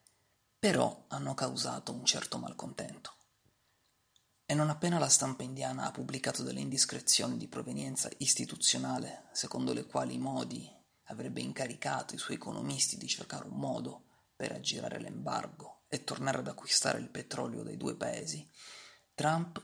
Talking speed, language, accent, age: 140 wpm, Italian, native, 30-49